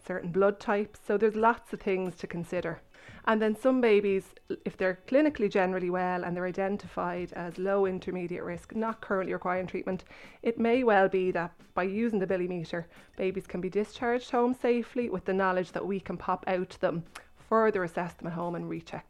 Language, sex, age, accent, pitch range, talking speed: English, female, 20-39, Irish, 180-195 Hz, 195 wpm